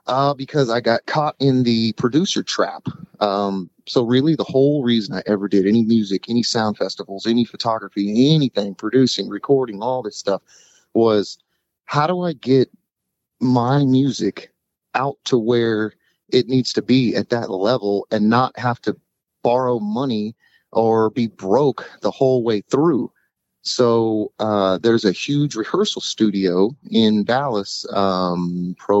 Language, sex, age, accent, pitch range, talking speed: English, male, 30-49, American, 100-130 Hz, 150 wpm